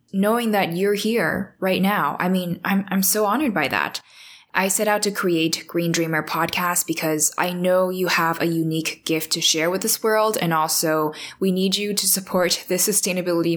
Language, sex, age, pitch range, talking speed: English, female, 10-29, 165-200 Hz, 195 wpm